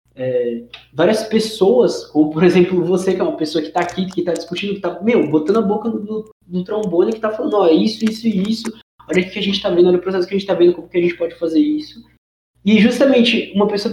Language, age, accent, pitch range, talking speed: Portuguese, 20-39, Brazilian, 175-235 Hz, 265 wpm